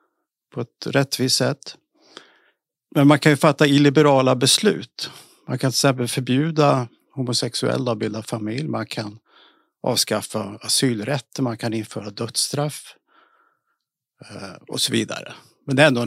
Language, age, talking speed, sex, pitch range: Swedish, 50-69, 130 wpm, male, 120-150 Hz